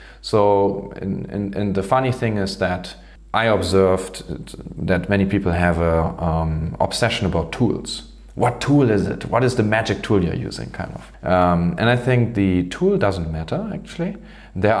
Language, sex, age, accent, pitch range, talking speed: English, male, 30-49, German, 90-110 Hz, 165 wpm